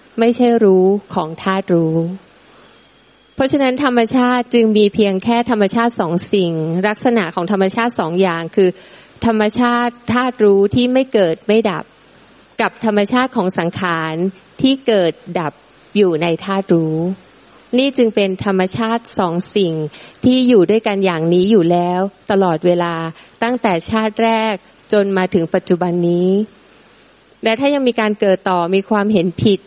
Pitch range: 180-225 Hz